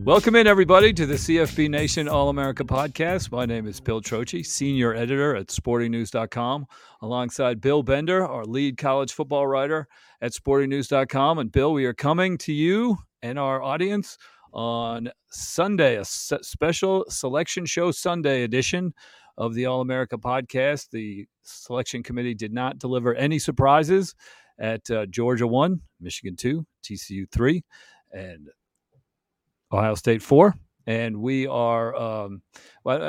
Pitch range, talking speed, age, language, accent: 115-150 Hz, 135 wpm, 40-59, English, American